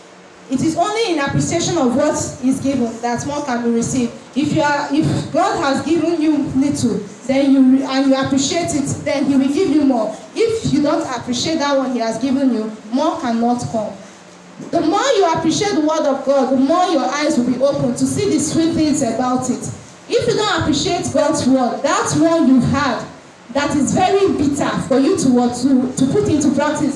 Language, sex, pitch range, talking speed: English, female, 260-320 Hz, 205 wpm